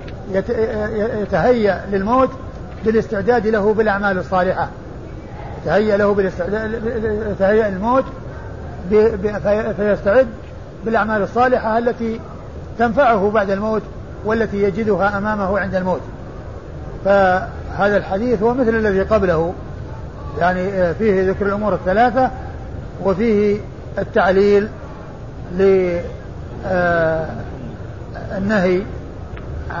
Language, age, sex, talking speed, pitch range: Arabic, 50-69, male, 70 wpm, 190-225 Hz